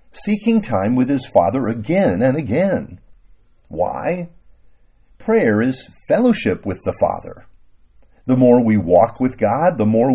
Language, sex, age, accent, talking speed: English, male, 50-69, American, 135 wpm